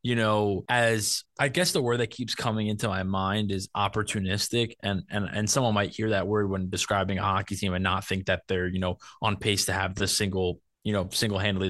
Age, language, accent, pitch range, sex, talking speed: 20-39, English, American, 100-125 Hz, male, 225 wpm